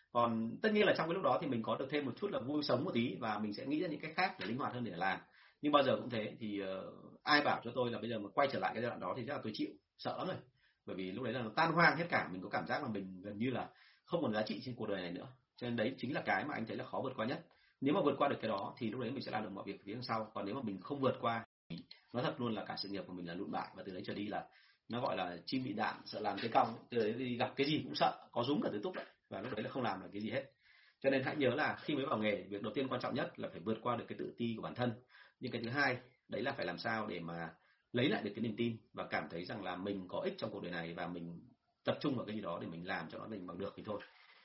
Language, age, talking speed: Vietnamese, 30-49, 345 wpm